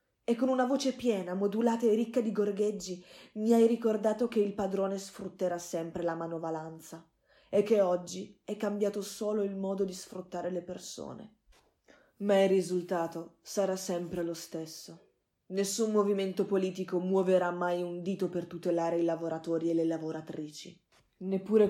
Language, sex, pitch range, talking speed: Italian, female, 175-210 Hz, 150 wpm